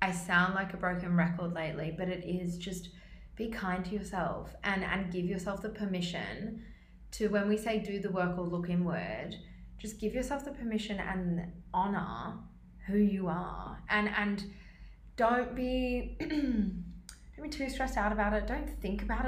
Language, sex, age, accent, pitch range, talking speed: English, female, 20-39, Australian, 165-205 Hz, 170 wpm